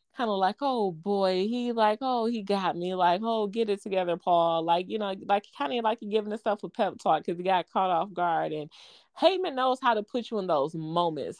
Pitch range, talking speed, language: 180-230 Hz, 240 wpm, English